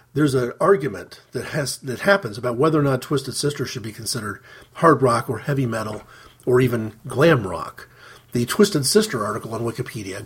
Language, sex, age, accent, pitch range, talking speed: English, male, 40-59, American, 125-155 Hz, 180 wpm